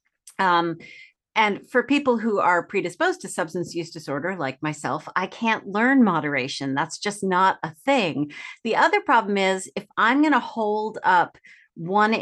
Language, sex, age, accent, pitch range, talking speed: English, female, 40-59, American, 165-220 Hz, 160 wpm